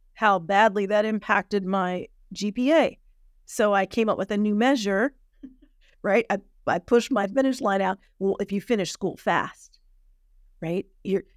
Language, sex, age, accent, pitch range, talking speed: English, female, 40-59, American, 165-215 Hz, 160 wpm